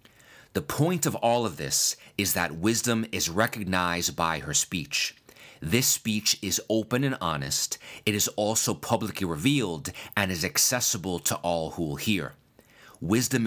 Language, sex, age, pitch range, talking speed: English, male, 30-49, 90-115 Hz, 150 wpm